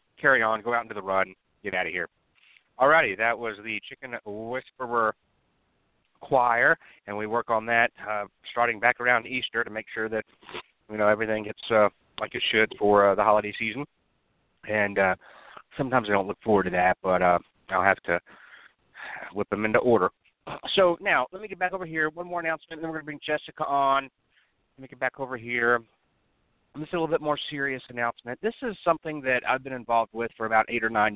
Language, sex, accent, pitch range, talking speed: English, male, American, 95-120 Hz, 210 wpm